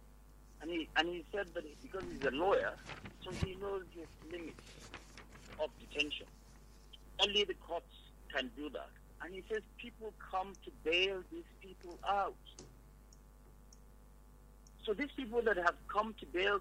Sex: male